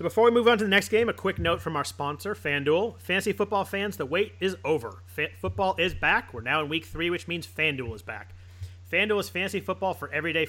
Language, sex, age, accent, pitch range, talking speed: English, male, 30-49, American, 130-175 Hz, 245 wpm